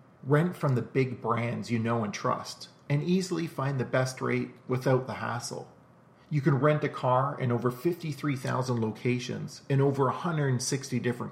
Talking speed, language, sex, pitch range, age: 165 wpm, English, male, 125-155 Hz, 40-59